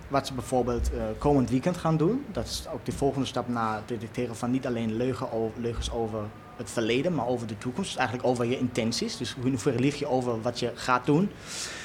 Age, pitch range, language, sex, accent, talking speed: 20-39, 115-150 Hz, Dutch, male, Dutch, 220 wpm